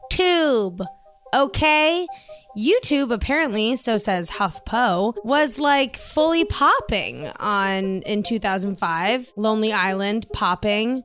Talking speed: 100 wpm